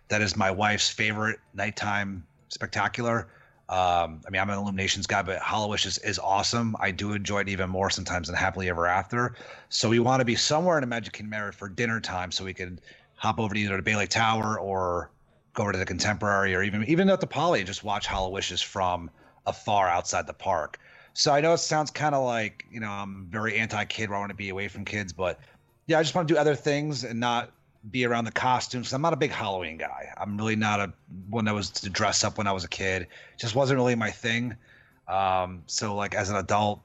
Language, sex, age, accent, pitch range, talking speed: English, male, 30-49, American, 95-120 Hz, 235 wpm